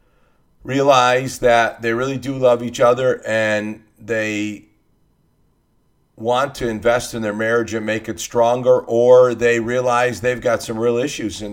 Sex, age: male, 50-69